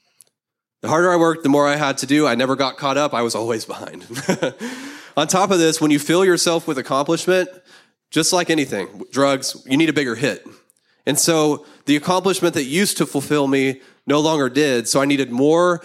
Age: 20-39